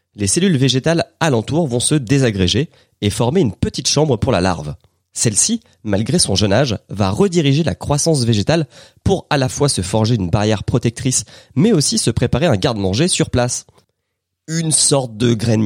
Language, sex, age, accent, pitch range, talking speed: French, male, 30-49, French, 95-140 Hz, 175 wpm